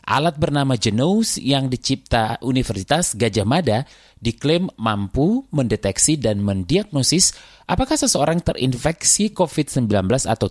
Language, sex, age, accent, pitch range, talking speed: Indonesian, male, 30-49, native, 120-170 Hz, 105 wpm